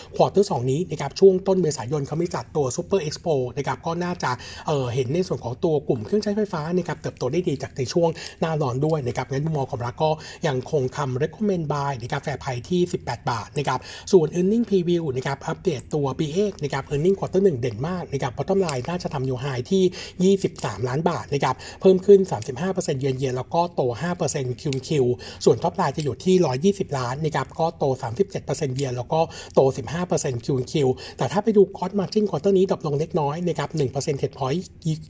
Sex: male